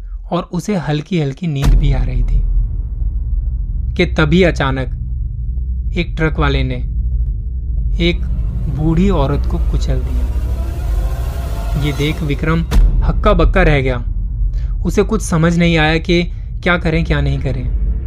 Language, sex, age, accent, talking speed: Hindi, male, 20-39, native, 135 wpm